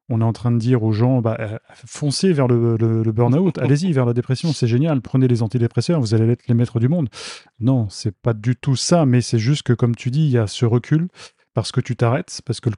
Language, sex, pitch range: French, male, 115-130 Hz